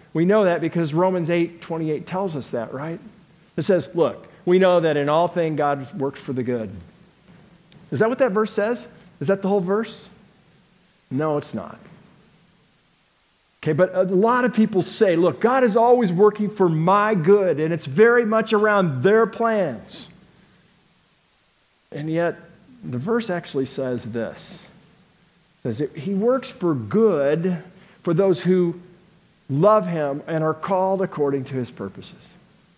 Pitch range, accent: 155-195 Hz, American